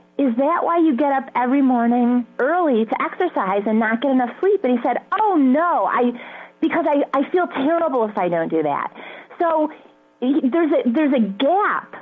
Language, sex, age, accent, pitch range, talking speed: English, female, 30-49, American, 250-320 Hz, 190 wpm